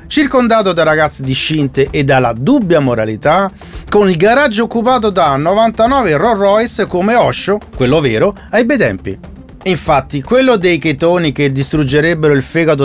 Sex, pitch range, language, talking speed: male, 140-220 Hz, Italian, 145 wpm